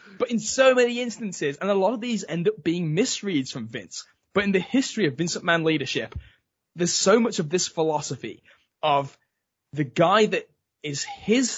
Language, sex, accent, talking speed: English, male, British, 185 wpm